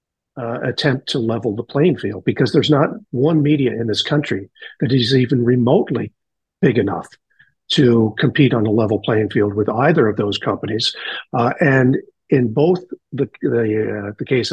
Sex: male